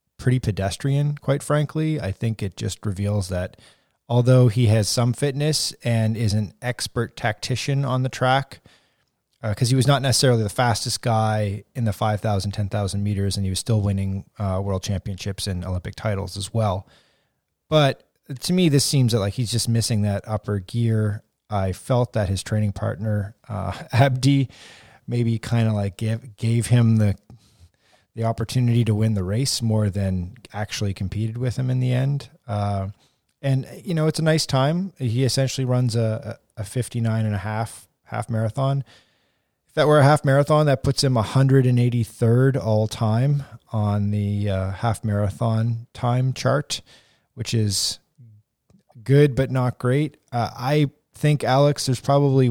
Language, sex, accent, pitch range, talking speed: English, male, American, 105-135 Hz, 160 wpm